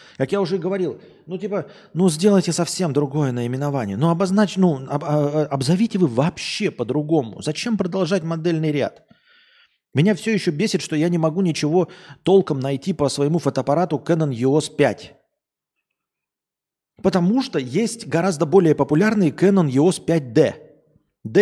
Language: Russian